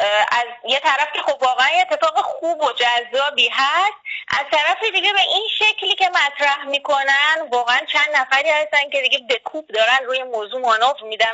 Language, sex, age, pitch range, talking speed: Persian, female, 20-39, 240-325 Hz, 170 wpm